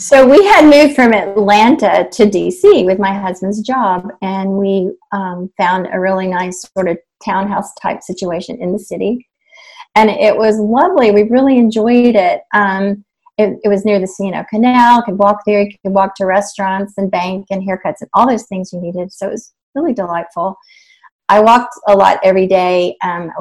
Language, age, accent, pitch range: English, 40-59, American, 185-210 Hz